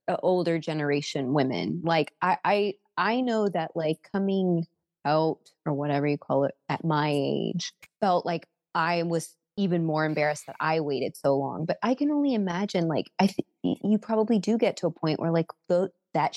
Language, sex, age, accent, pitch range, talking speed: English, female, 20-39, American, 155-190 Hz, 190 wpm